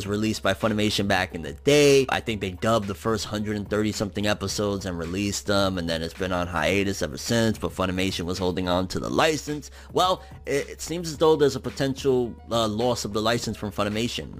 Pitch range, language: 110-140 Hz, English